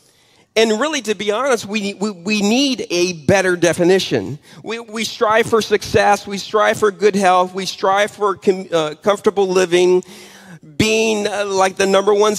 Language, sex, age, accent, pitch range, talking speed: English, male, 40-59, American, 170-205 Hz, 170 wpm